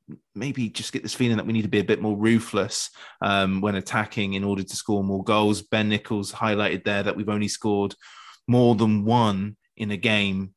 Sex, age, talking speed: male, 20-39, 210 wpm